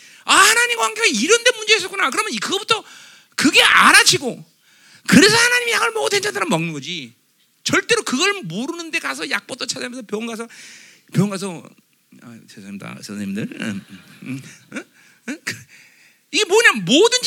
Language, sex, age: Korean, male, 40-59